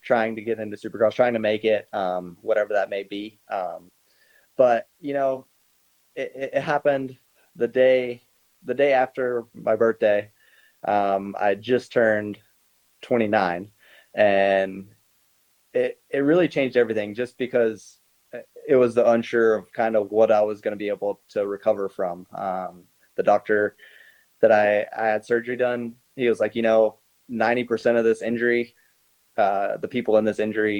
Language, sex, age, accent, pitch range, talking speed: English, male, 20-39, American, 100-125 Hz, 160 wpm